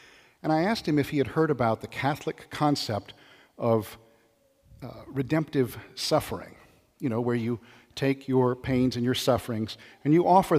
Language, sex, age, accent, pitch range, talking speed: English, male, 50-69, American, 115-145 Hz, 165 wpm